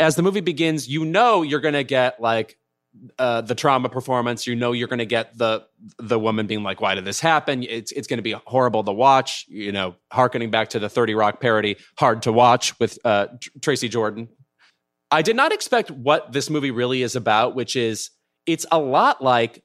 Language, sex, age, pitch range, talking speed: English, male, 30-49, 110-145 Hz, 215 wpm